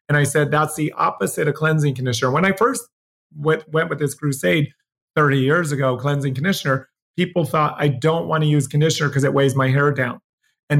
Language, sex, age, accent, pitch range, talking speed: English, male, 30-49, American, 135-155 Hz, 205 wpm